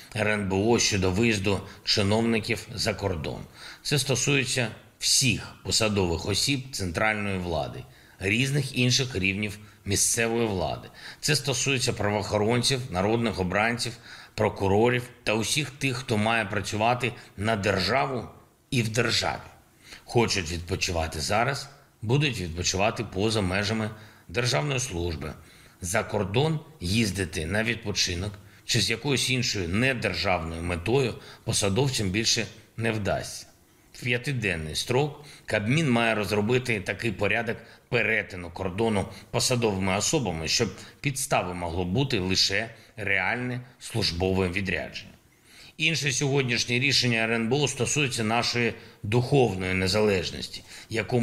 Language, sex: Ukrainian, male